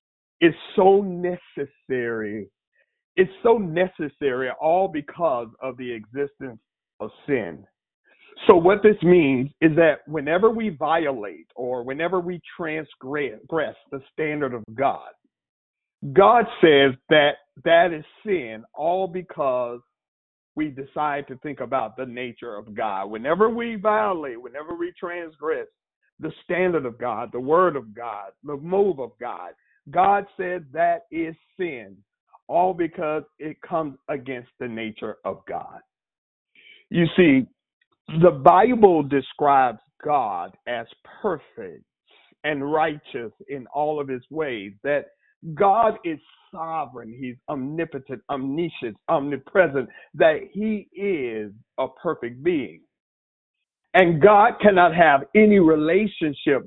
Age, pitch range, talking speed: 50-69, 135-185 Hz, 120 wpm